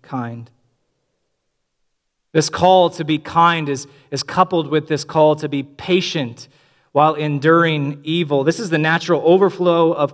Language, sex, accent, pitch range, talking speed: English, male, American, 130-170 Hz, 140 wpm